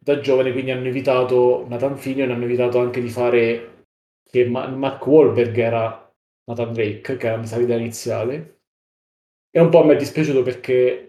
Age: 20-39